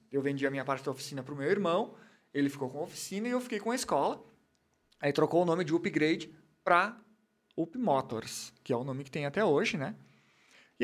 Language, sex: Portuguese, male